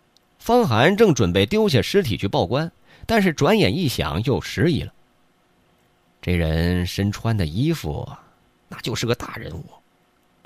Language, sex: Chinese, male